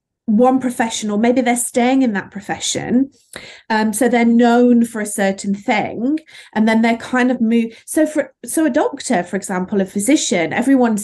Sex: female